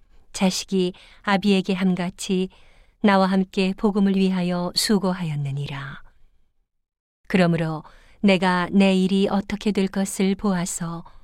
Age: 40-59